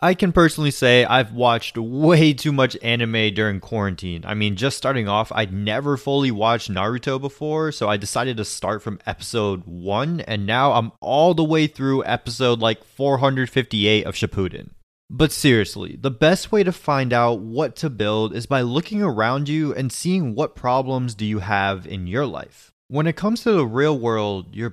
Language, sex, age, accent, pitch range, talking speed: English, male, 20-39, American, 110-150 Hz, 185 wpm